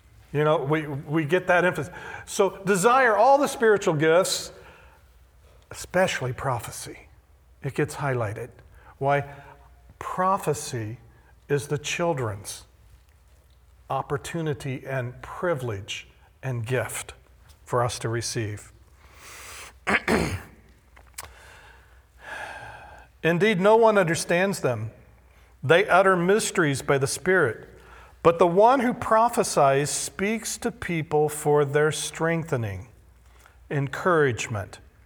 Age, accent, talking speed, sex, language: 50-69, American, 95 wpm, male, English